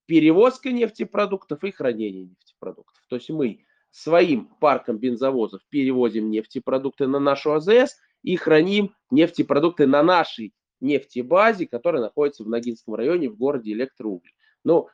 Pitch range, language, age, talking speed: 125-165 Hz, Russian, 20-39, 125 wpm